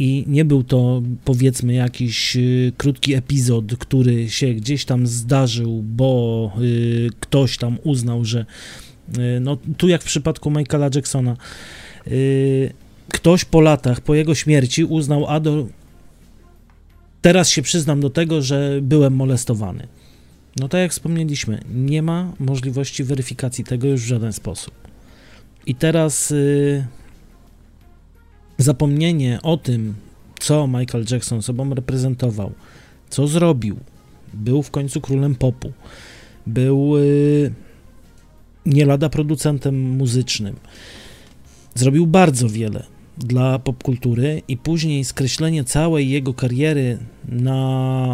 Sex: male